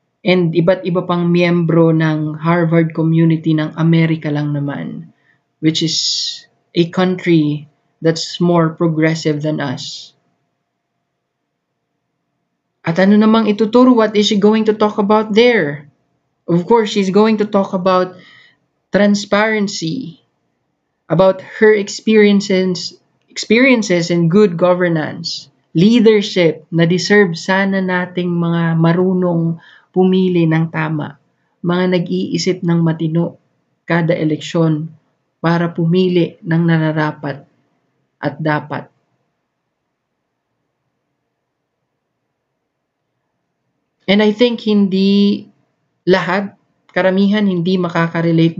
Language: Filipino